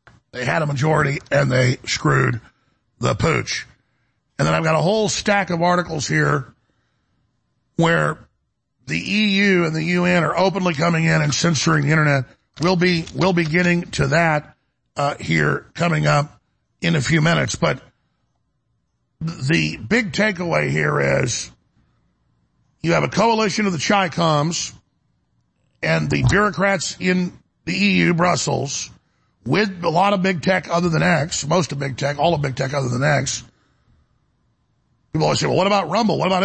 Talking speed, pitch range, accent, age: 160 wpm, 140-185 Hz, American, 50-69